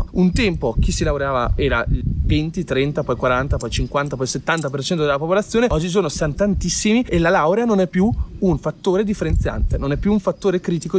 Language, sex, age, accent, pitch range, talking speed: Italian, male, 30-49, native, 130-185 Hz, 190 wpm